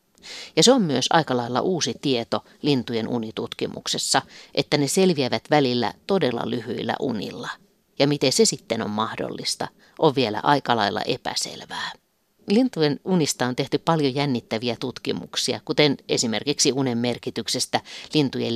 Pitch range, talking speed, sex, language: 120-155 Hz, 130 wpm, female, Finnish